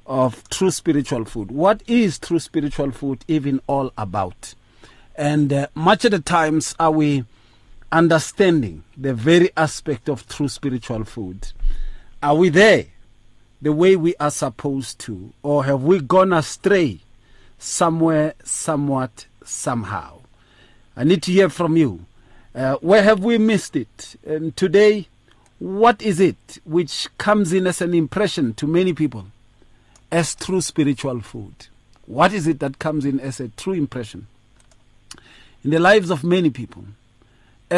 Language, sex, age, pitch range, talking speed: English, male, 40-59, 115-165 Hz, 145 wpm